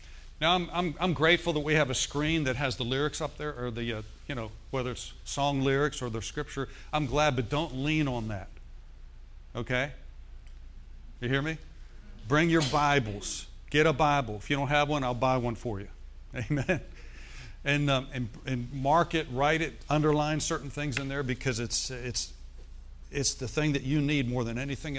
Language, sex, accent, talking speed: English, male, American, 195 wpm